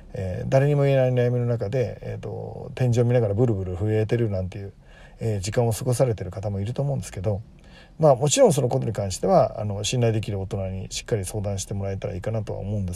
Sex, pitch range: male, 105-135 Hz